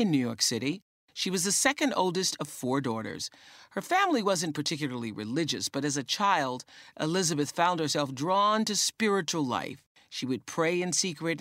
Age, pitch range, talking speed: 50-69, 135-210 Hz, 175 wpm